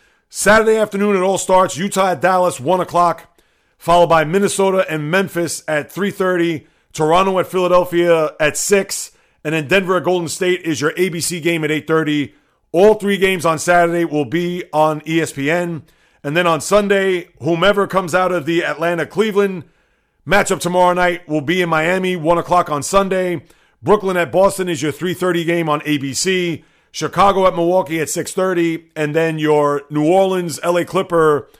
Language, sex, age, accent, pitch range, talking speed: English, male, 40-59, American, 155-185 Hz, 160 wpm